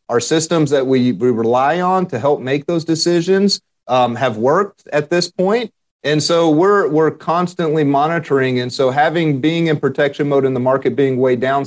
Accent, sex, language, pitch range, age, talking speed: American, male, English, 120-150 Hz, 40-59, 190 wpm